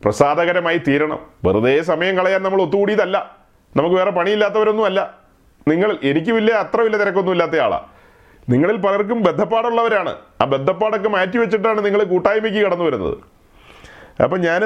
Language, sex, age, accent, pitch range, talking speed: Malayalam, male, 40-59, native, 190-230 Hz, 110 wpm